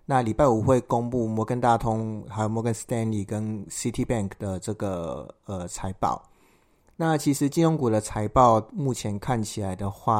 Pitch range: 100-120 Hz